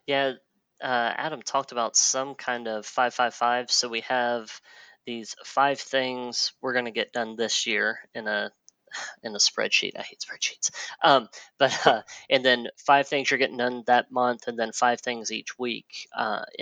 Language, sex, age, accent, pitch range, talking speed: English, female, 20-39, American, 120-135 Hz, 185 wpm